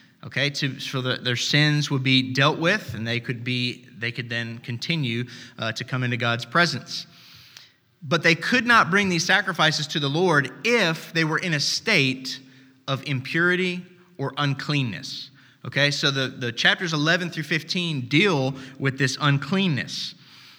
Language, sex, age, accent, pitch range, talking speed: English, male, 20-39, American, 125-170 Hz, 165 wpm